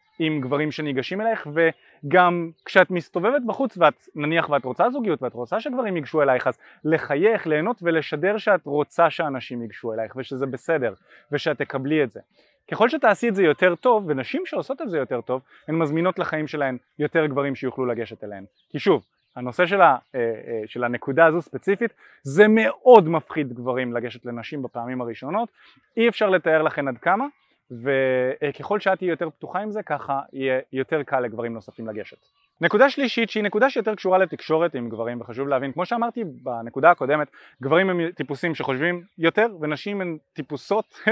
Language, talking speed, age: Hebrew, 165 wpm, 20-39